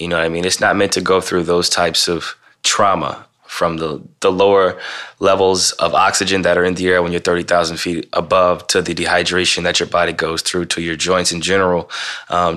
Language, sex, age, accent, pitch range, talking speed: English, male, 20-39, American, 85-90 Hz, 220 wpm